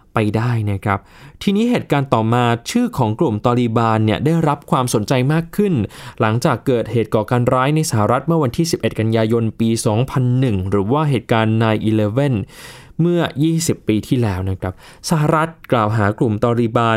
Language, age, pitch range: Thai, 20-39, 115-155 Hz